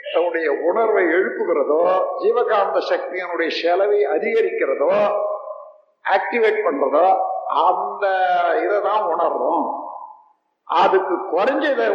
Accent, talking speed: native, 70 wpm